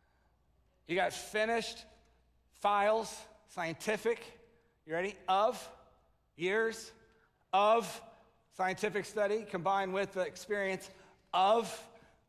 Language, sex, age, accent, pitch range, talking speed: English, male, 50-69, American, 175-225 Hz, 85 wpm